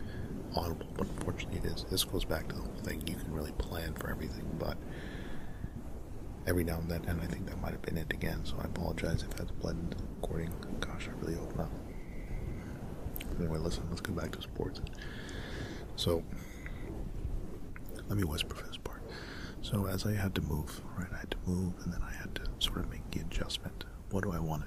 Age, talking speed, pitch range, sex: 40-59, 205 wpm, 75-95 Hz, male